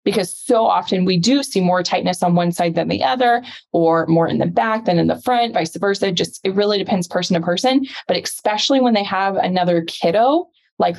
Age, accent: 20-39, American